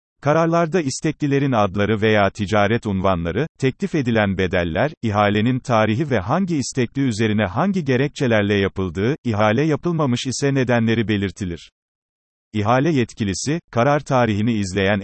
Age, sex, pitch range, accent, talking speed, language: 40-59, male, 105-130 Hz, native, 110 wpm, Turkish